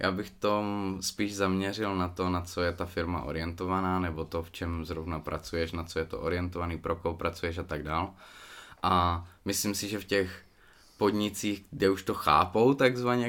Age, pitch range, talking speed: 20-39, 90-100 Hz, 190 wpm